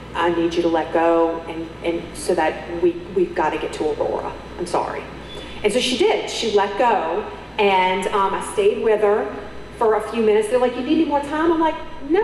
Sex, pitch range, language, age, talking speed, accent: female, 175-255 Hz, English, 40-59, 225 wpm, American